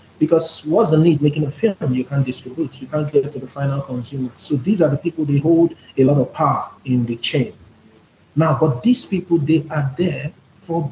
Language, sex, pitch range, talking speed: English, male, 135-165 Hz, 220 wpm